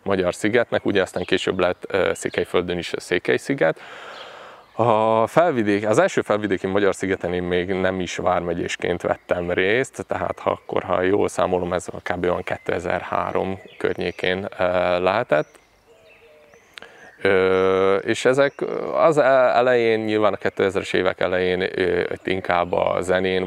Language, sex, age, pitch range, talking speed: Hungarian, male, 20-39, 90-105 Hz, 115 wpm